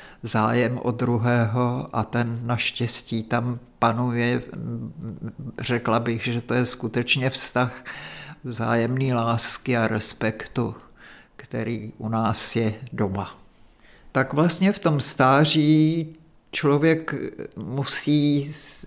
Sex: male